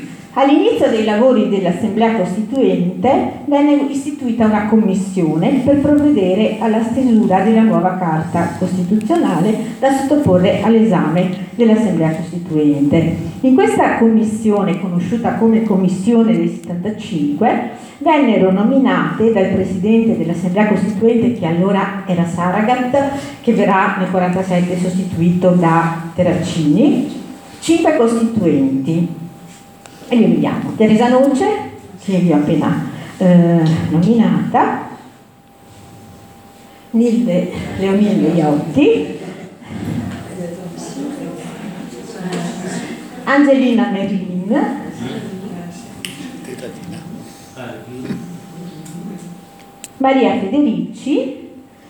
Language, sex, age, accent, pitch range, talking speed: Italian, female, 50-69, native, 180-245 Hz, 75 wpm